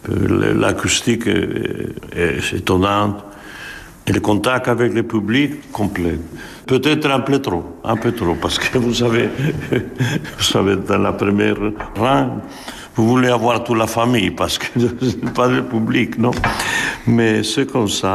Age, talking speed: 70-89, 150 wpm